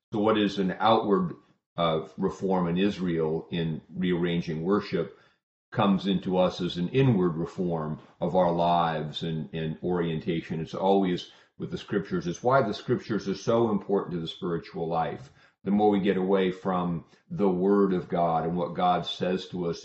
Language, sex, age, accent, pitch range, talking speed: English, male, 40-59, American, 80-95 Hz, 170 wpm